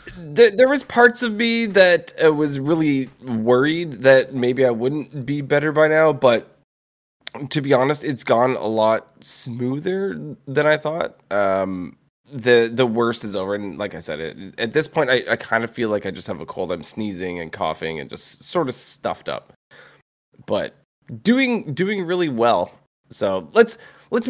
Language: English